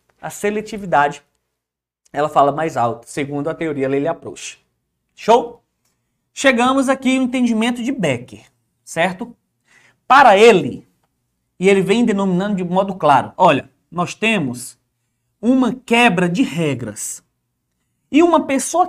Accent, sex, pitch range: Brazilian, male, 145-235 Hz